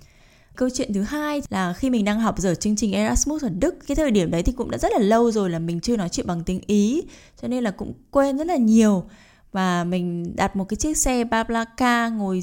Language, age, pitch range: Vietnamese, 10-29, 190-245 Hz